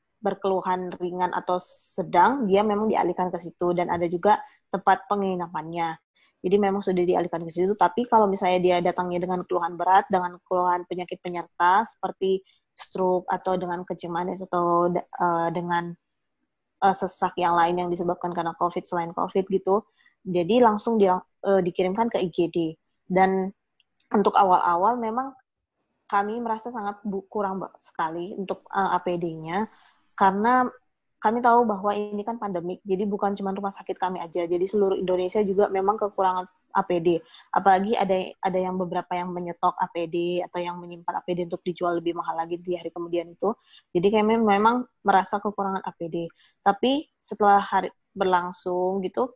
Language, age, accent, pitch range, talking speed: Indonesian, 20-39, native, 180-200 Hz, 150 wpm